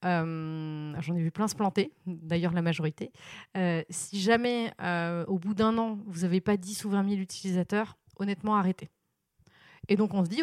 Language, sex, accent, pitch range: French, female, French, 175-210 Hz